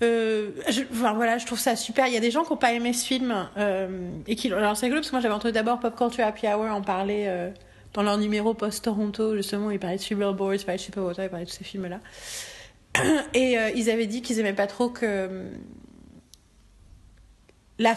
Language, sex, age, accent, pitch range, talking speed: French, female, 30-49, French, 195-235 Hz, 235 wpm